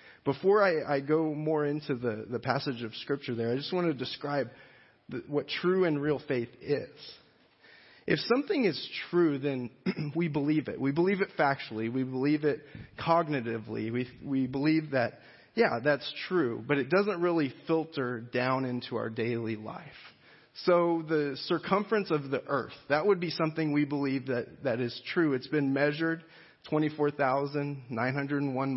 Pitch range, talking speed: 125-155 Hz, 160 wpm